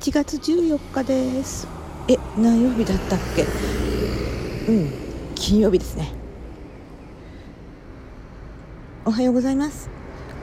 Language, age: Japanese, 50-69